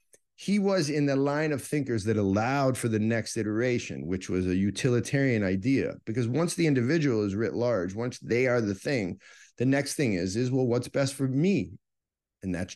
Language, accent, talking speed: English, American, 200 wpm